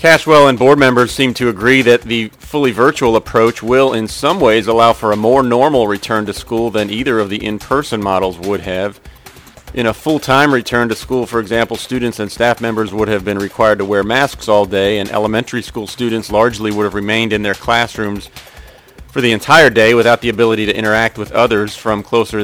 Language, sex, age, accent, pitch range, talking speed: English, male, 40-59, American, 105-125 Hz, 205 wpm